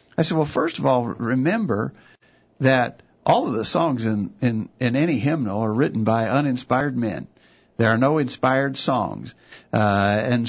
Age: 50-69